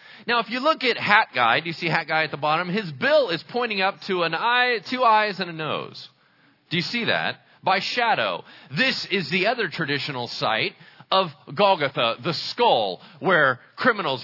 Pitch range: 150-205 Hz